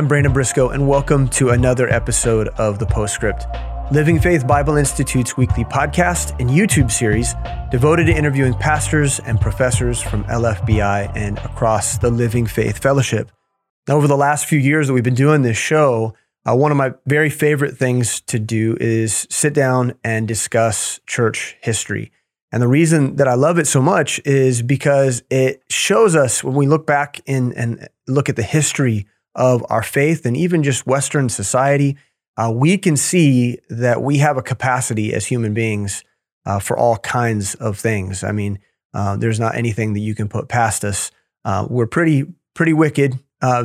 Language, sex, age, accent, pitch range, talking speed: English, male, 30-49, American, 115-145 Hz, 180 wpm